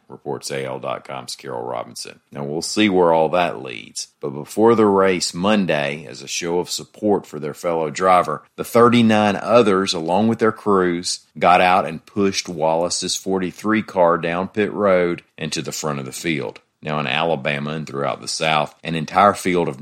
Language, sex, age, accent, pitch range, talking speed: English, male, 40-59, American, 75-95 Hz, 180 wpm